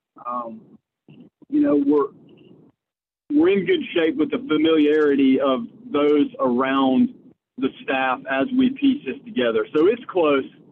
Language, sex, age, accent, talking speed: English, male, 40-59, American, 135 wpm